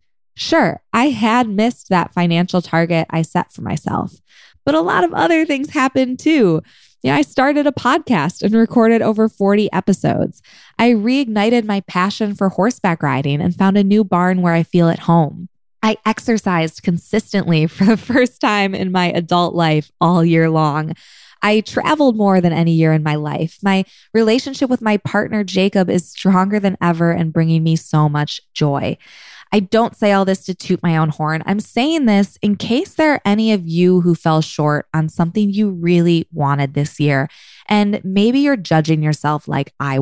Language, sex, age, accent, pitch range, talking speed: English, female, 20-39, American, 165-220 Hz, 185 wpm